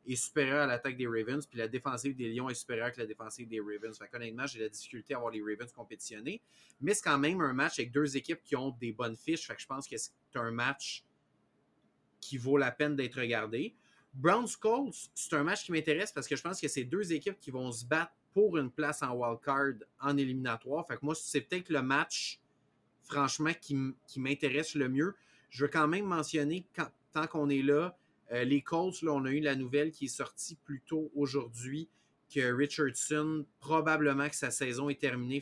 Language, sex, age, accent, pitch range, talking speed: French, male, 30-49, Canadian, 125-150 Hz, 220 wpm